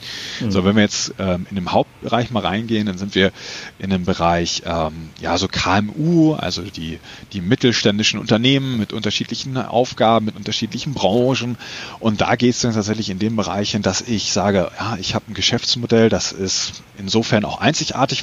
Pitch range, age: 95-120 Hz, 30-49